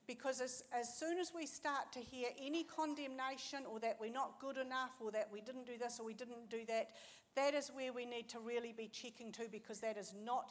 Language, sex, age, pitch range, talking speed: English, female, 60-79, 210-255 Hz, 240 wpm